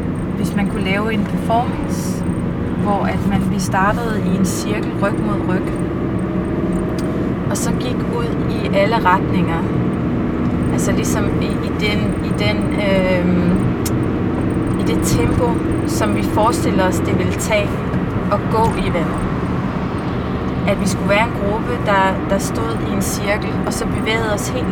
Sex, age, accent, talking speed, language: female, 30-49, native, 155 wpm, Danish